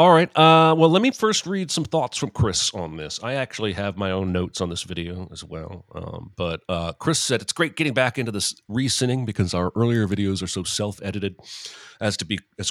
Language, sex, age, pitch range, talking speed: English, male, 40-59, 95-125 Hz, 225 wpm